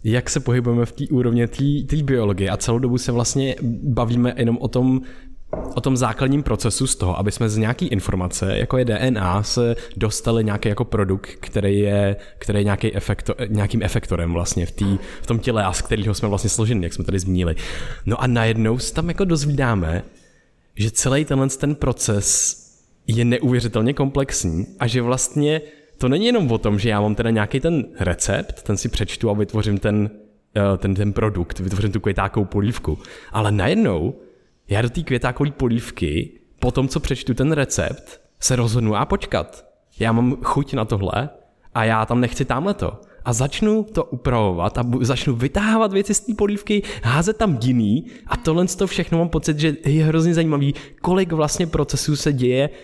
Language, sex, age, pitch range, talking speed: Czech, male, 20-39, 105-140 Hz, 185 wpm